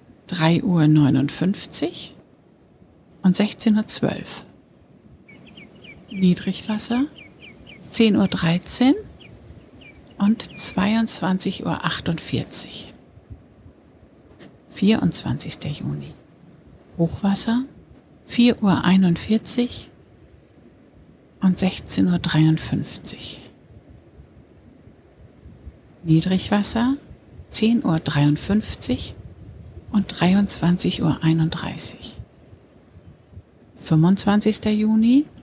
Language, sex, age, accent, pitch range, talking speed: German, female, 60-79, German, 165-215 Hz, 45 wpm